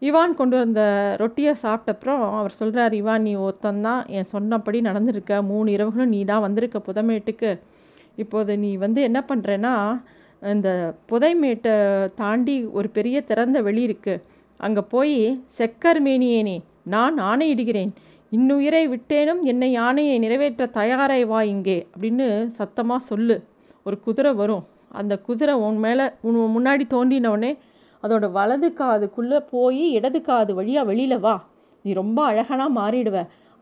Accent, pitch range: native, 210-255 Hz